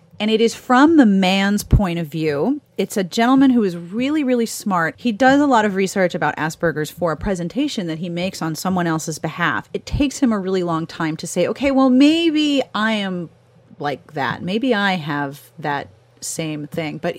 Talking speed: 205 wpm